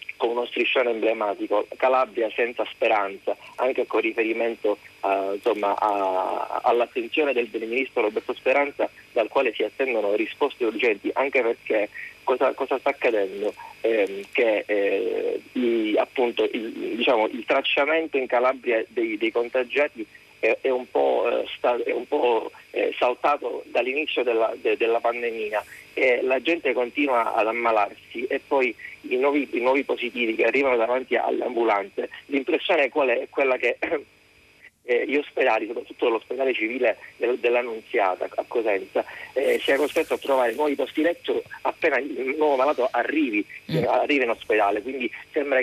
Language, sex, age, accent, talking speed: Italian, male, 30-49, native, 135 wpm